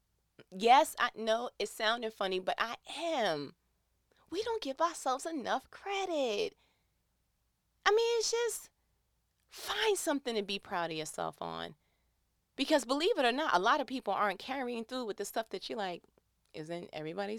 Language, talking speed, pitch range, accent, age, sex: English, 160 wpm, 155-250 Hz, American, 30-49, female